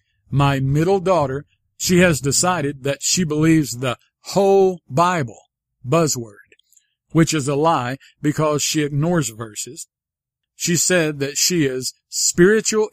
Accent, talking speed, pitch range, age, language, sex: American, 125 wpm, 135-175 Hz, 50-69, English, male